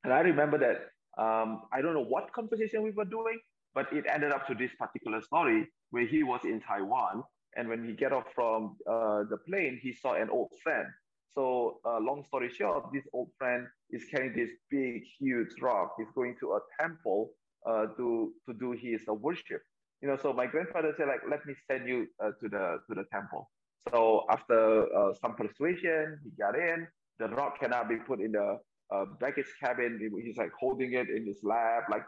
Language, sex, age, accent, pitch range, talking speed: English, male, 20-39, Malaysian, 120-165 Hz, 205 wpm